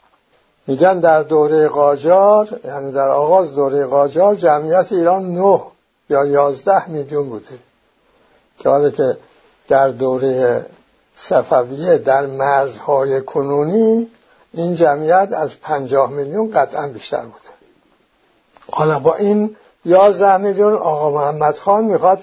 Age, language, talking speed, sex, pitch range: 60-79, English, 115 wpm, male, 140-195 Hz